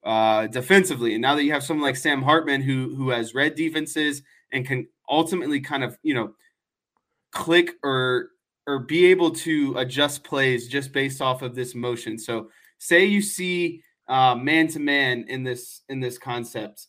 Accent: American